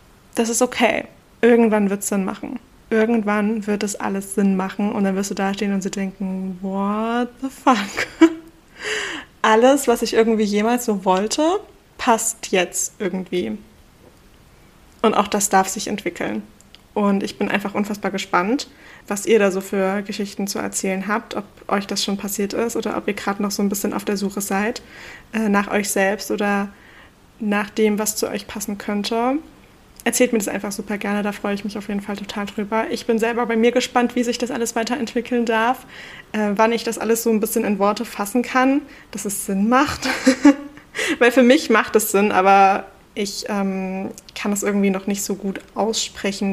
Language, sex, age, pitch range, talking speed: German, female, 20-39, 200-235 Hz, 190 wpm